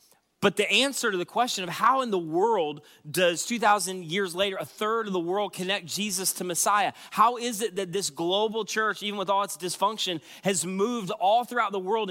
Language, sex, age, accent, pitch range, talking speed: English, male, 30-49, American, 175-210 Hz, 210 wpm